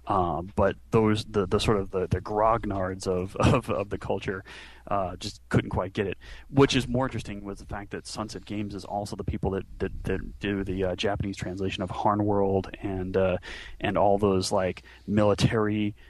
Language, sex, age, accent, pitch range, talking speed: English, male, 30-49, American, 95-110 Hz, 200 wpm